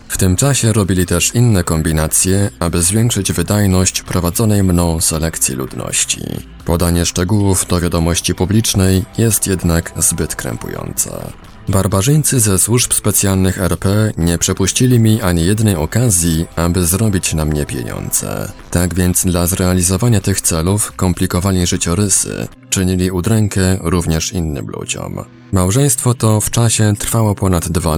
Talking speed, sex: 125 wpm, male